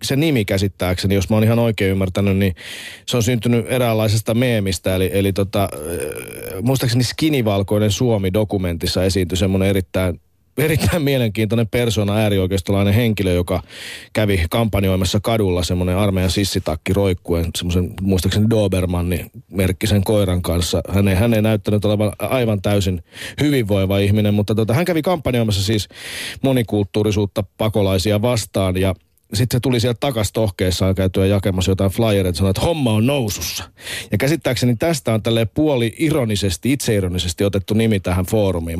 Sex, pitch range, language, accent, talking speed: male, 95-125 Hz, Finnish, native, 140 wpm